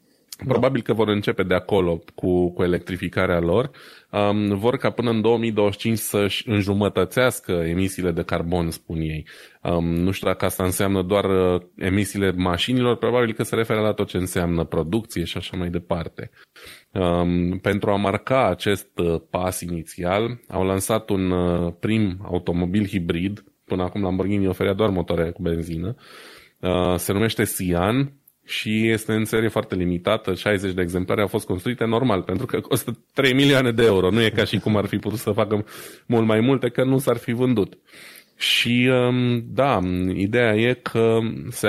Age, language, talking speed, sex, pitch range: 20-39, Romanian, 165 wpm, male, 90-115 Hz